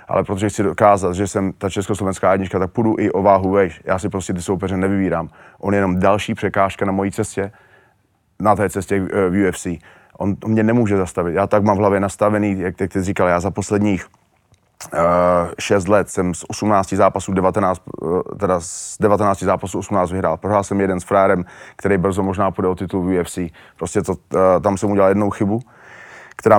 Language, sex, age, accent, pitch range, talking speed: Czech, male, 30-49, native, 95-105 Hz, 195 wpm